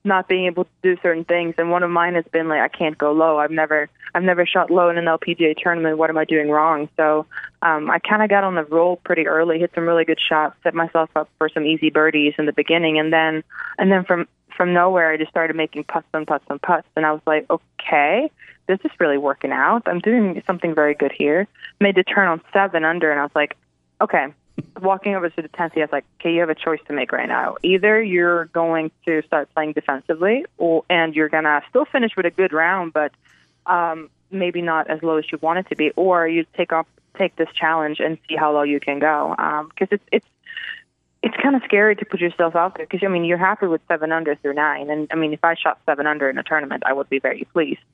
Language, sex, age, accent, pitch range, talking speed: English, female, 20-39, American, 155-180 Hz, 250 wpm